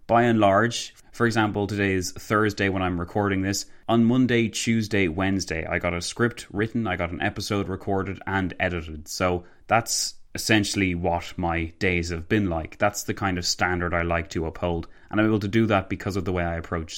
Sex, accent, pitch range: male, Irish, 90-115 Hz